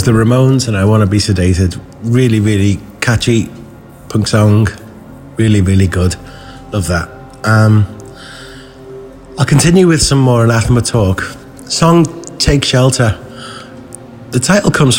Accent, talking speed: British, 130 wpm